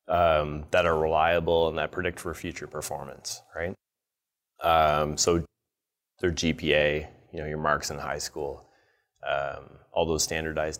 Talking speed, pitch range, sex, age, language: 145 wpm, 80-95 Hz, male, 30-49, English